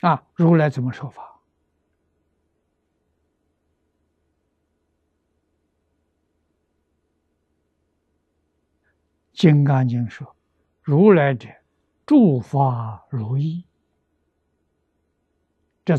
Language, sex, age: Chinese, male, 60-79